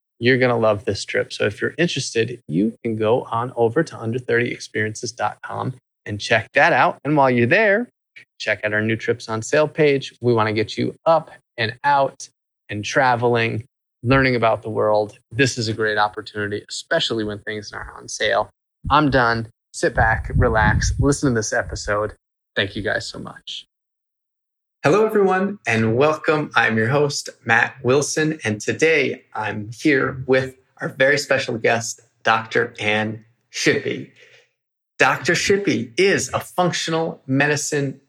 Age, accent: 20-39, American